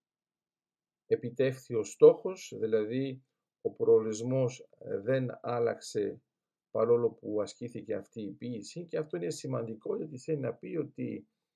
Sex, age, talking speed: male, 50-69, 120 wpm